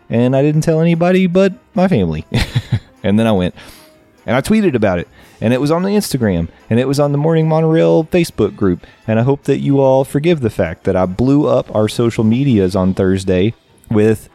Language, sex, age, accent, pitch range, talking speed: English, male, 30-49, American, 95-120 Hz, 215 wpm